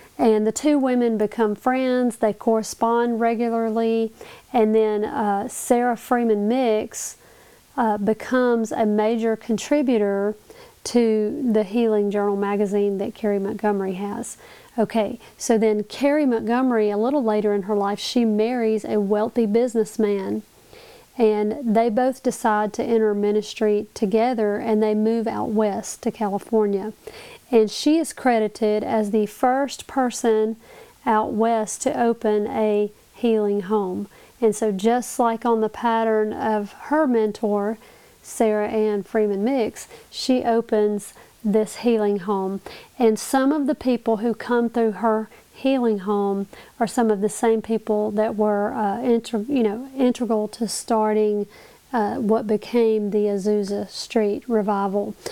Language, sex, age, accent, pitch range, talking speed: English, female, 40-59, American, 210-240 Hz, 140 wpm